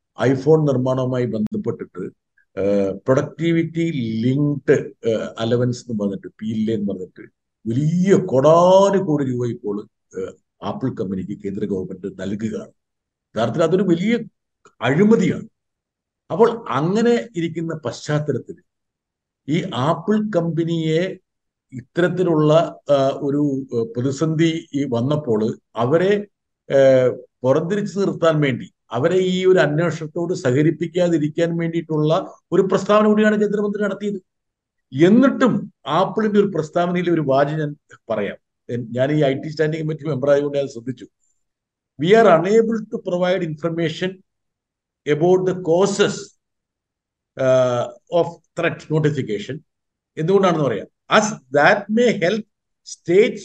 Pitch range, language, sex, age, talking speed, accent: 130-185 Hz, Malayalam, male, 50-69, 90 wpm, native